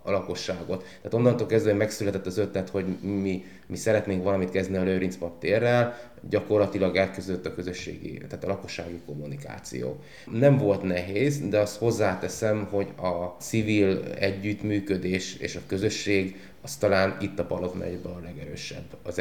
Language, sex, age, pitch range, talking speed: Hungarian, male, 20-39, 95-110 Hz, 145 wpm